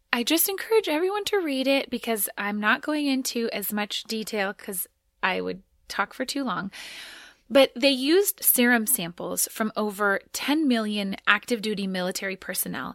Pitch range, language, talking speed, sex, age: 195-255 Hz, English, 160 wpm, female, 20-39